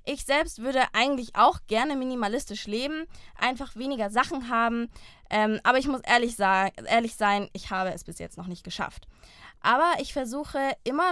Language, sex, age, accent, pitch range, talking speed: German, female, 20-39, German, 210-260 Hz, 175 wpm